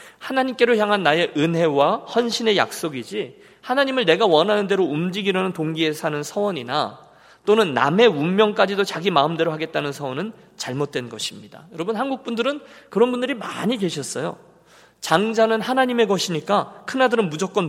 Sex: male